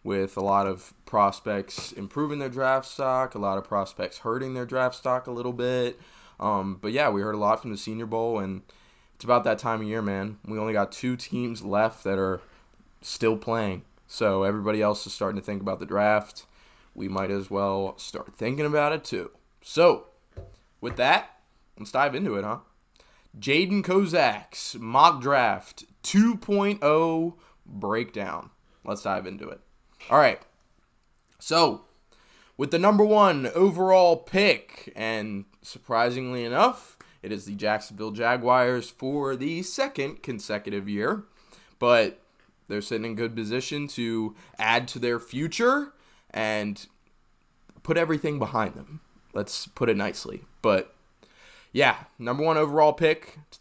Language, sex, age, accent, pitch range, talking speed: English, male, 20-39, American, 105-150 Hz, 150 wpm